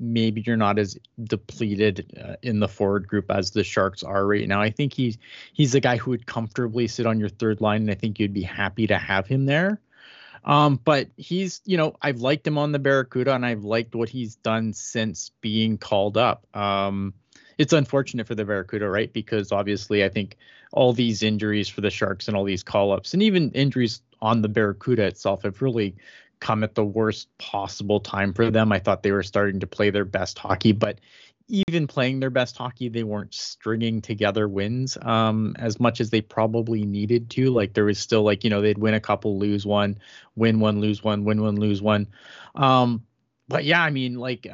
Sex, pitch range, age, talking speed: male, 105-130 Hz, 30-49, 210 wpm